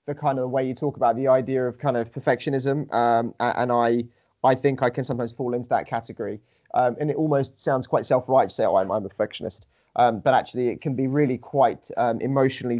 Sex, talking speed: male, 230 wpm